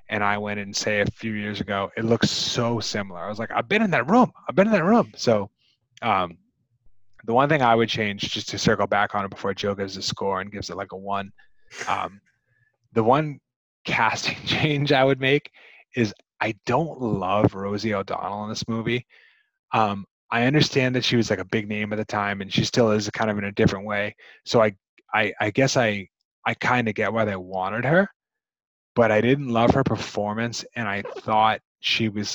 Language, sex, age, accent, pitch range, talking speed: English, male, 20-39, American, 100-125 Hz, 215 wpm